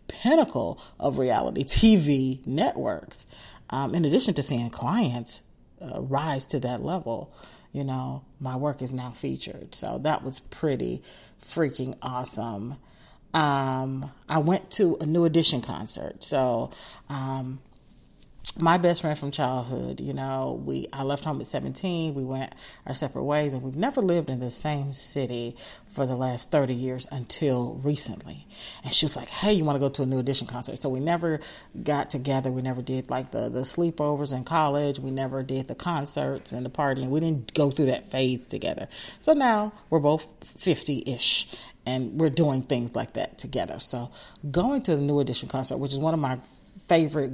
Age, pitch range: 40-59, 130-155 Hz